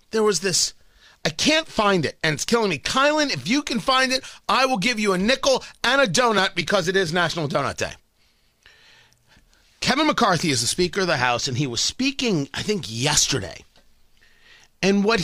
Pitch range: 190-295 Hz